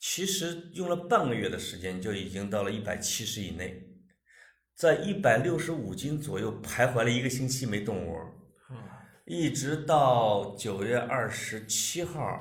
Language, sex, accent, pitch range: Chinese, male, native, 105-150 Hz